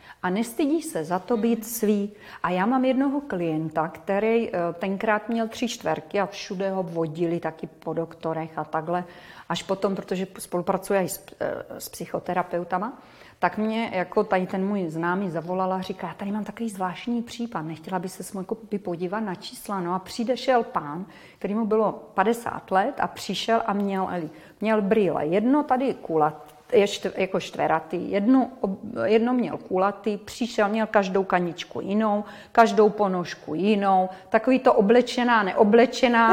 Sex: female